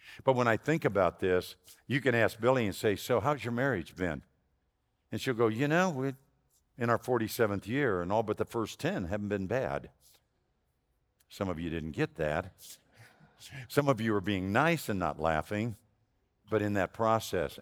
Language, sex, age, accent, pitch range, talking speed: English, male, 50-69, American, 80-110 Hz, 185 wpm